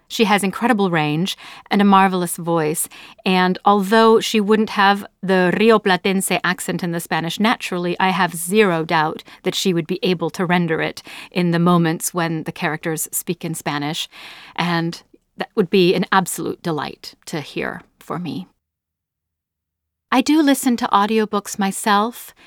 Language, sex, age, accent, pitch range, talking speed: English, female, 40-59, American, 170-205 Hz, 160 wpm